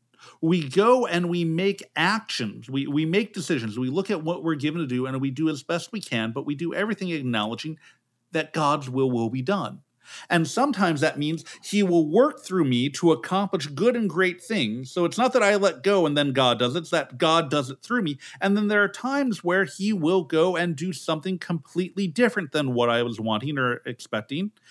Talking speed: 220 wpm